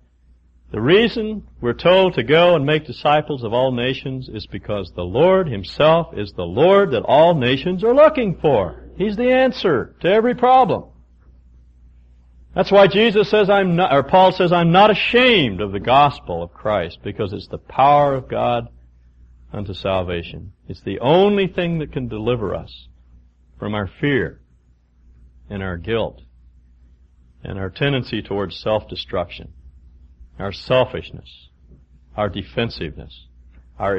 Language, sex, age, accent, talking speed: English, male, 60-79, American, 145 wpm